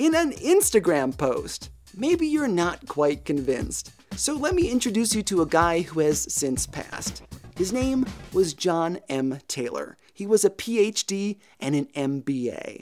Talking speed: 160 wpm